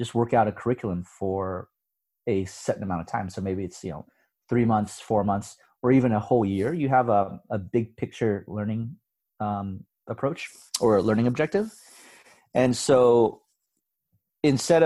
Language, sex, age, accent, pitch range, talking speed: English, male, 30-49, American, 100-120 Hz, 165 wpm